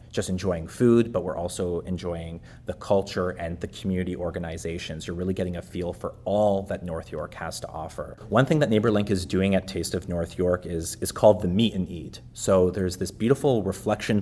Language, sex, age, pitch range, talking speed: English, male, 30-49, 90-110 Hz, 205 wpm